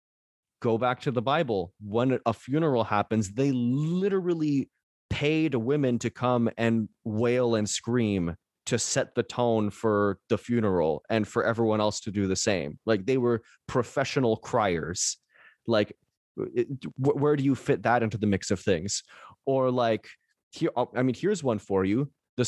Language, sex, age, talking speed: English, male, 20-39, 160 wpm